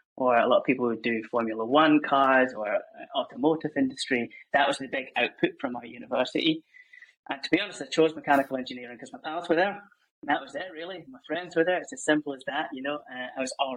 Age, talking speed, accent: 10-29, 235 wpm, British